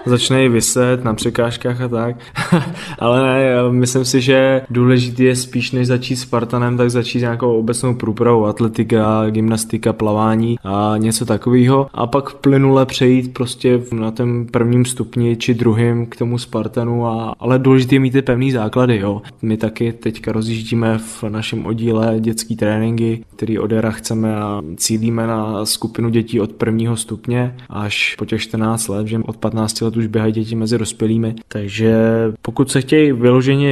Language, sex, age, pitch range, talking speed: Czech, male, 20-39, 110-120 Hz, 160 wpm